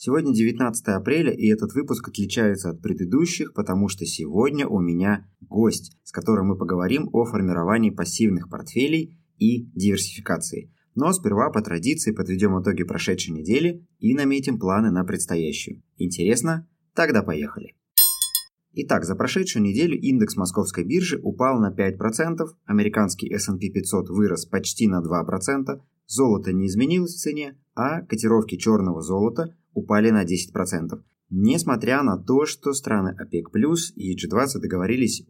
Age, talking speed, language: 20-39, 135 wpm, Russian